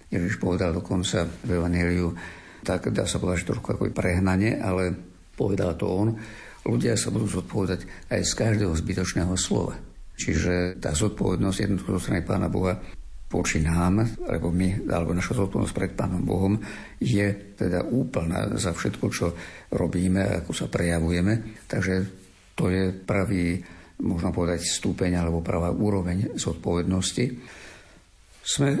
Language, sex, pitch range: Slovak, male, 90-100 Hz